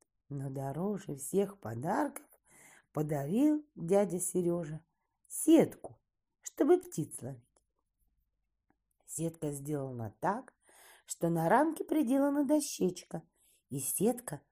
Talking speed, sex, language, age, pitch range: 85 wpm, female, Russian, 40-59, 165-265 Hz